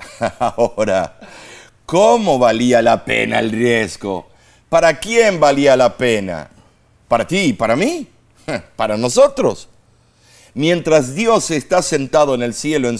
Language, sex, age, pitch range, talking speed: Spanish, male, 50-69, 120-190 Hz, 120 wpm